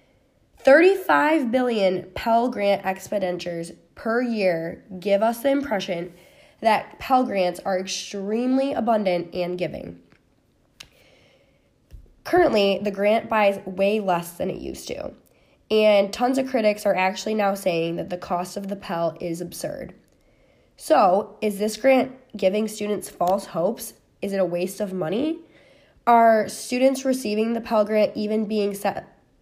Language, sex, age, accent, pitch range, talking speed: English, female, 20-39, American, 190-235 Hz, 140 wpm